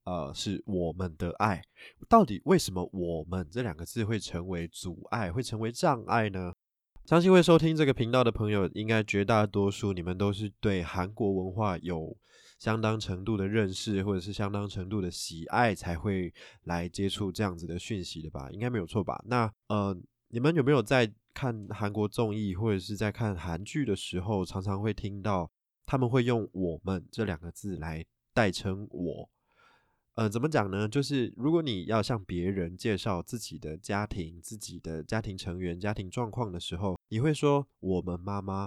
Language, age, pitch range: Chinese, 20-39, 90-110 Hz